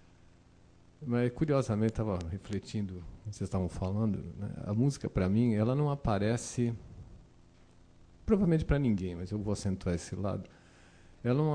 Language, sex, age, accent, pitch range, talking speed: Portuguese, male, 50-69, Brazilian, 90-110 Hz, 135 wpm